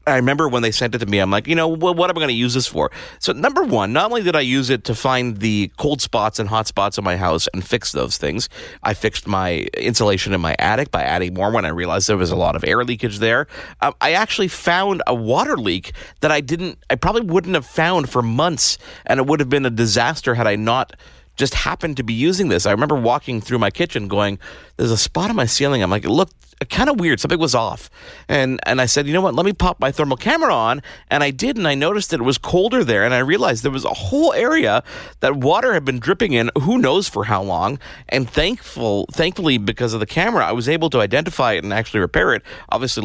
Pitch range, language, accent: 110-150 Hz, English, American